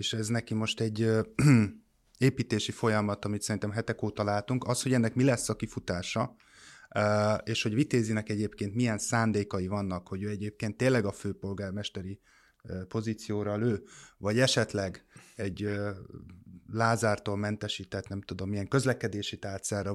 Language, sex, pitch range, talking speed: Hungarian, male, 105-120 Hz, 130 wpm